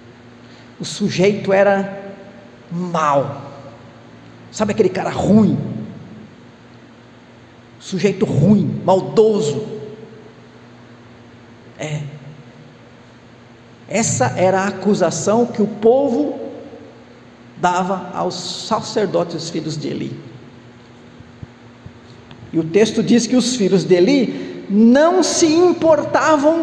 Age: 50-69